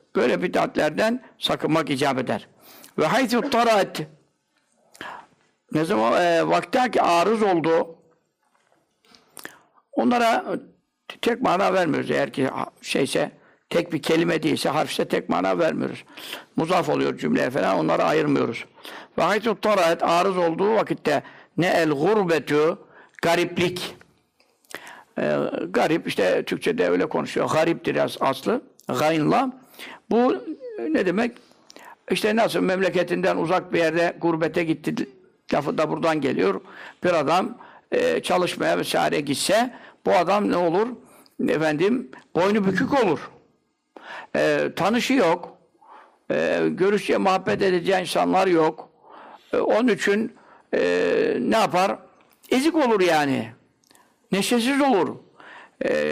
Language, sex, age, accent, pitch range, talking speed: Turkish, male, 60-79, native, 165-245 Hz, 110 wpm